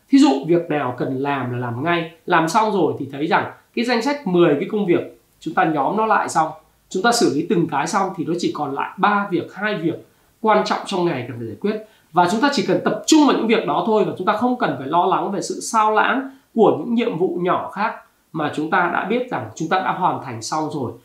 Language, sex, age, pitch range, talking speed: Vietnamese, male, 20-39, 165-265 Hz, 270 wpm